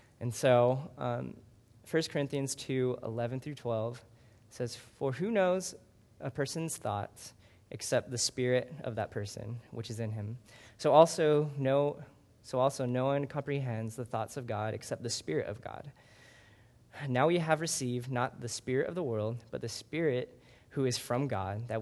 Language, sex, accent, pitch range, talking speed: English, male, American, 115-140 Hz, 165 wpm